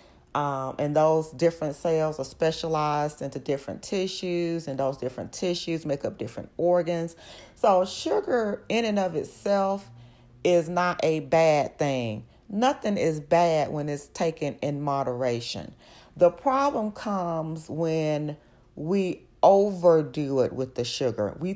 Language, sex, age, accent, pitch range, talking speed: English, female, 40-59, American, 140-175 Hz, 135 wpm